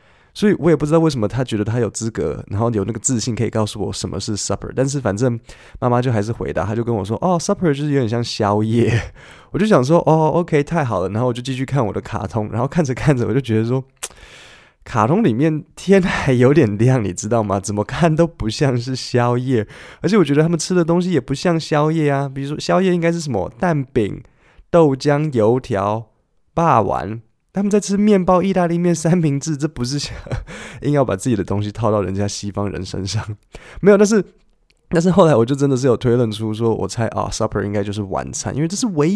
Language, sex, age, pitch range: Chinese, male, 20-39, 110-155 Hz